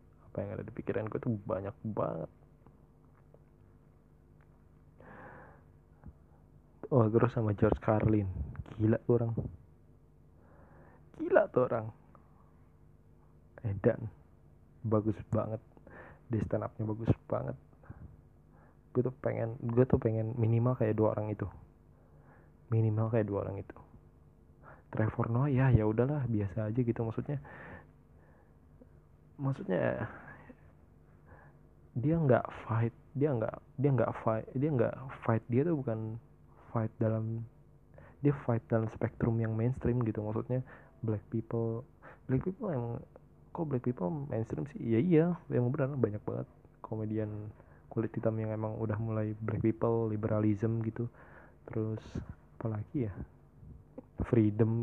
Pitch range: 105-120 Hz